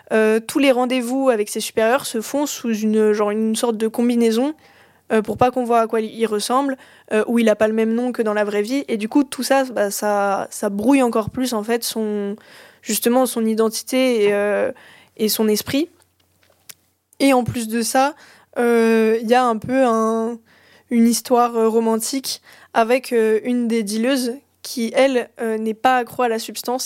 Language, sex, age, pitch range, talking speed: French, female, 20-39, 220-245 Hz, 200 wpm